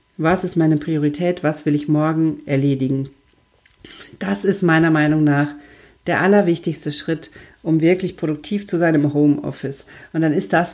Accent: German